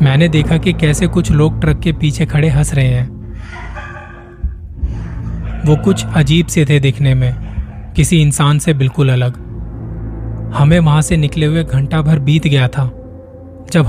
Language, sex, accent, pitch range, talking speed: Hindi, male, native, 125-150 Hz, 155 wpm